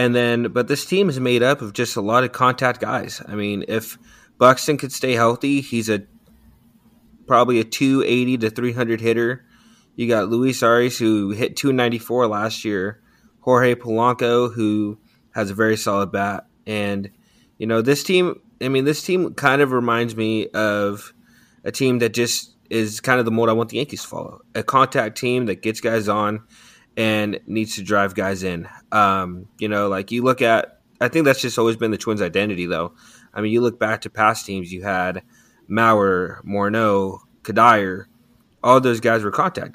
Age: 20-39